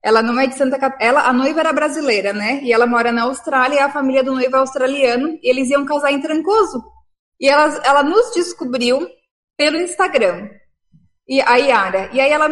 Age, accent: 20-39, Brazilian